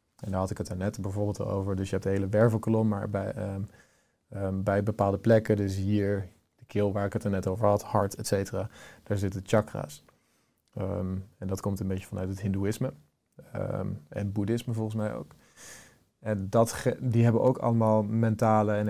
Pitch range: 95-110 Hz